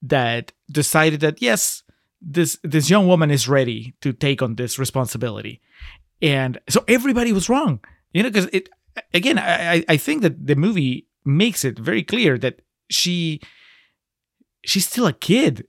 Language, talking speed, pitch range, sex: English, 155 wpm, 130-180 Hz, male